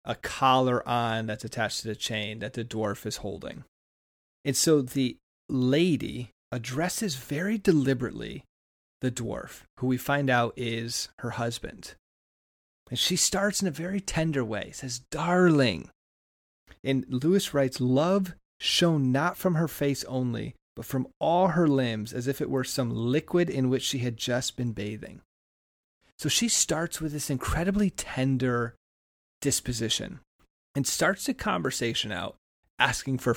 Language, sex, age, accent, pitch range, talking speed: English, male, 30-49, American, 115-145 Hz, 145 wpm